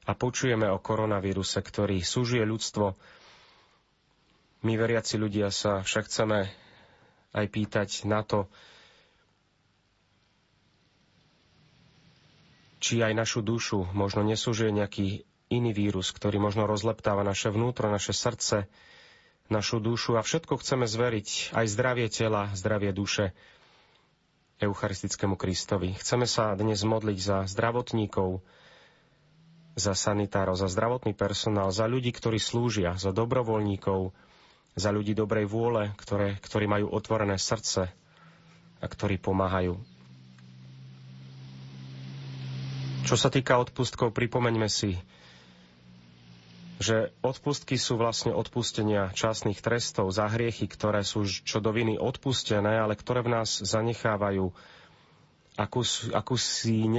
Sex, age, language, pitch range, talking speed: male, 30-49, Slovak, 100-115 Hz, 105 wpm